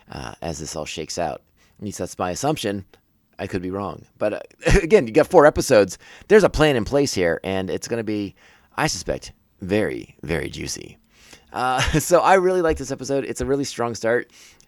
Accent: American